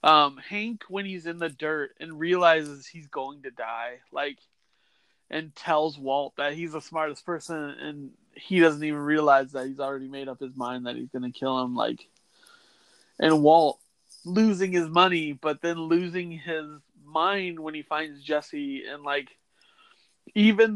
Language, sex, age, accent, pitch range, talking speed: English, male, 30-49, American, 145-185 Hz, 165 wpm